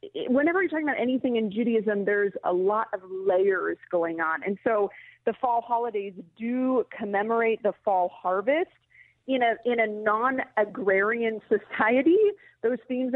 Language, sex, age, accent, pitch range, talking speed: English, female, 40-59, American, 200-245 Hz, 145 wpm